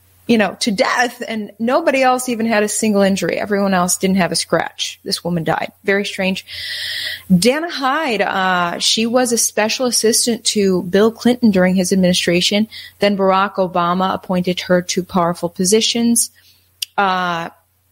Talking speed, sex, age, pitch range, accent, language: 155 wpm, female, 30-49, 180-225 Hz, American, English